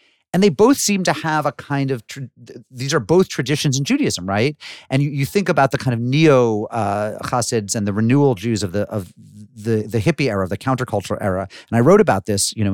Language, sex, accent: English, male, American